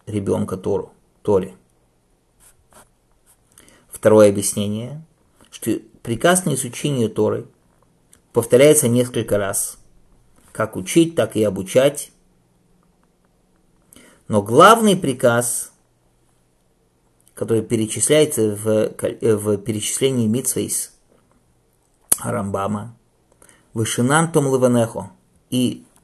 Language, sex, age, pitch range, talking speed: English, male, 50-69, 105-155 Hz, 70 wpm